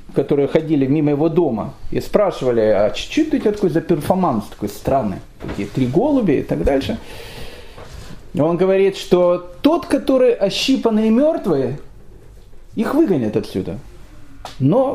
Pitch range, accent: 145-225 Hz, native